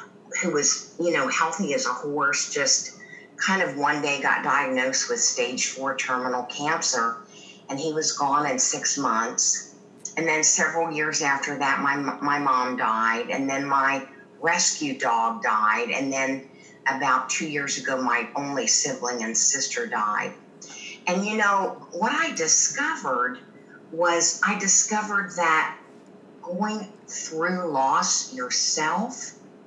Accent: American